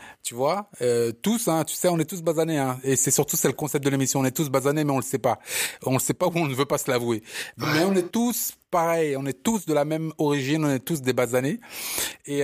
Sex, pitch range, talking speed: male, 115-145 Hz, 290 wpm